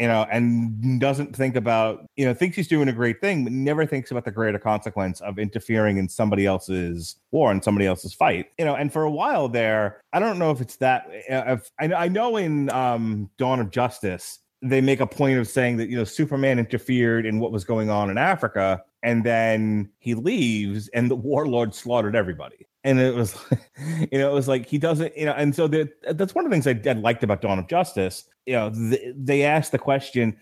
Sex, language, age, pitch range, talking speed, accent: male, English, 30-49, 110-140 Hz, 215 wpm, American